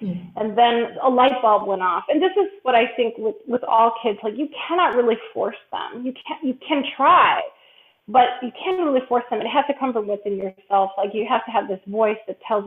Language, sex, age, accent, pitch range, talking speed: English, female, 30-49, American, 215-275 Hz, 235 wpm